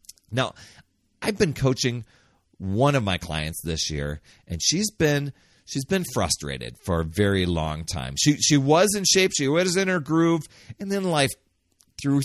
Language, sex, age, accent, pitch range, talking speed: English, male, 40-59, American, 85-130 Hz, 170 wpm